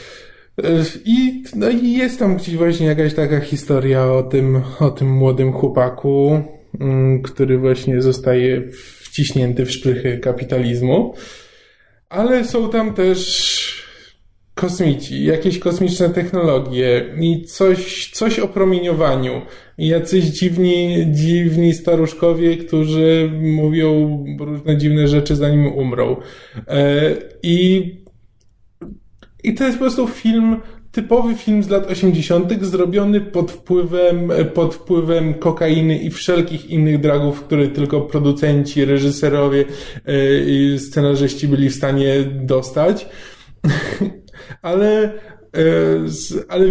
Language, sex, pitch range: Polish, male, 135-180 Hz